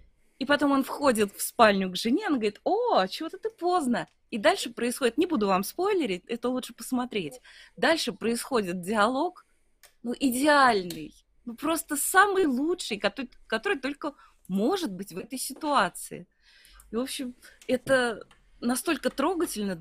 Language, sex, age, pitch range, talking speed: Russian, female, 20-39, 195-275 Hz, 140 wpm